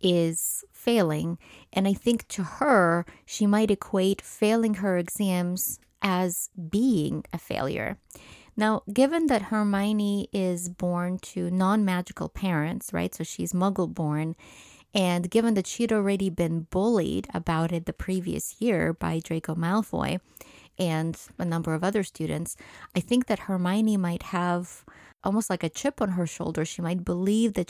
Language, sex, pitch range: English, female, 170-210 Hz